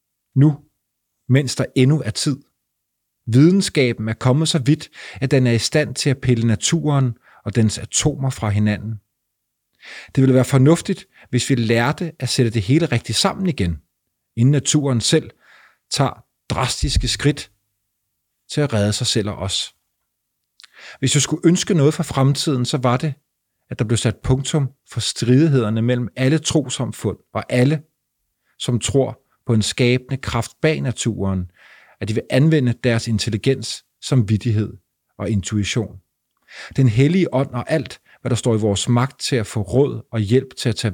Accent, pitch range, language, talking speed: native, 105-135 Hz, Danish, 165 wpm